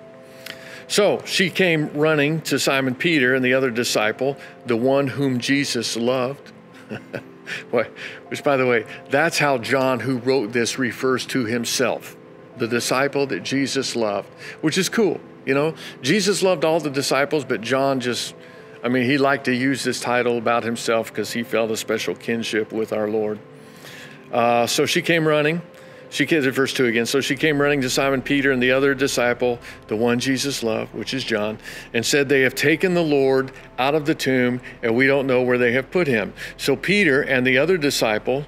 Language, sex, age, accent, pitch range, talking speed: English, male, 50-69, American, 120-140 Hz, 190 wpm